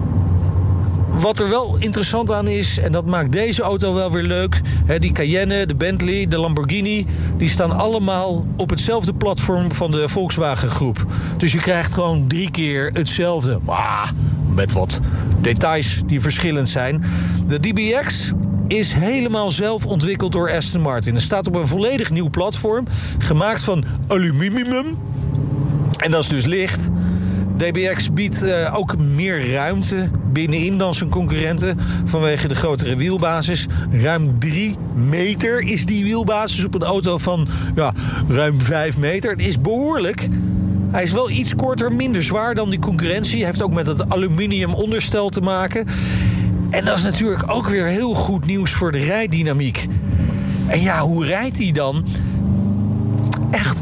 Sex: male